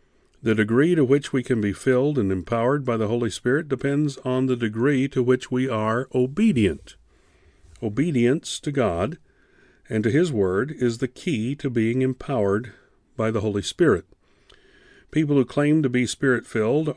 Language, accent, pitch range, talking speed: English, American, 110-135 Hz, 165 wpm